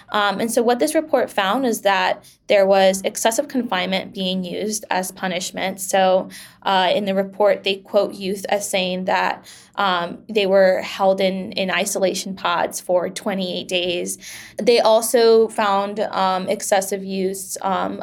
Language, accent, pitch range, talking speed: English, American, 190-225 Hz, 150 wpm